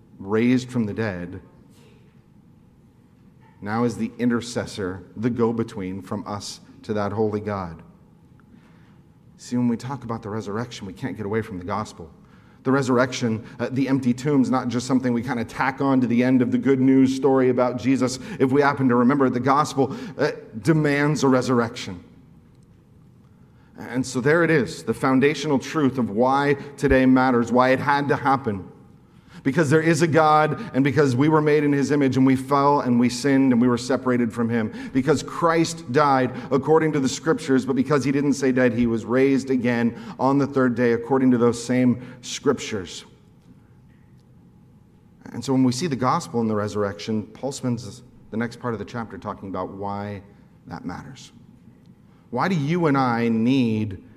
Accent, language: American, English